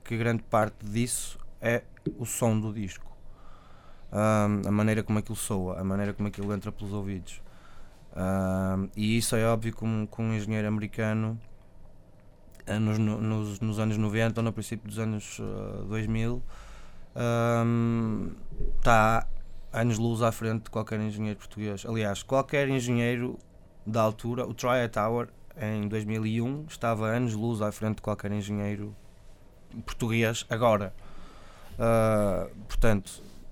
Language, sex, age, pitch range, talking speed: Portuguese, male, 20-39, 105-115 Hz, 135 wpm